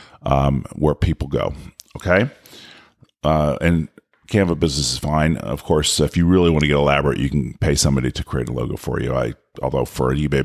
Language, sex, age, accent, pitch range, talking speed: English, male, 40-59, American, 75-105 Hz, 200 wpm